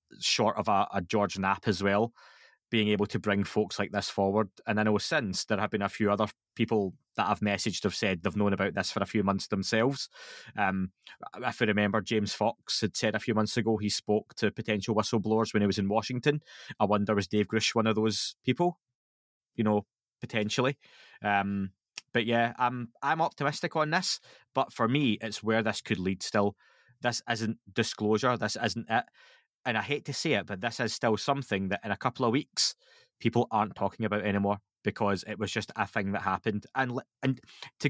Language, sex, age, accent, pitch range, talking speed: English, male, 20-39, British, 100-120 Hz, 205 wpm